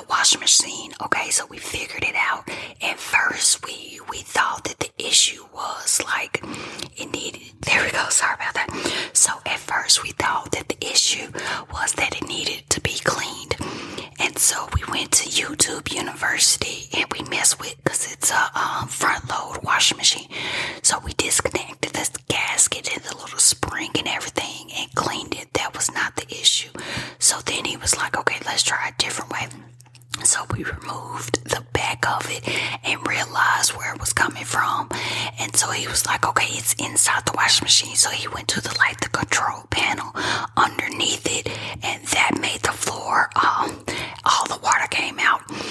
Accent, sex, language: American, female, English